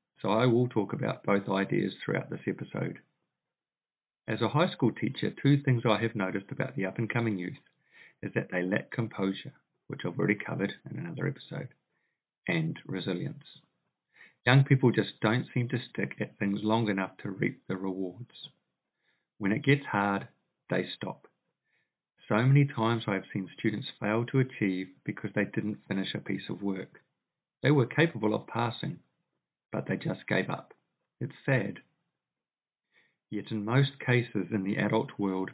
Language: English